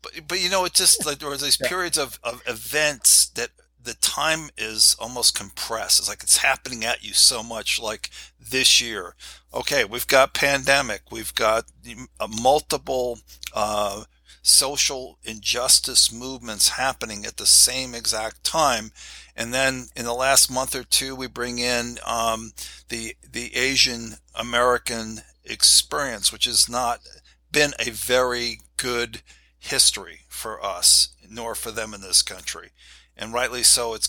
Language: English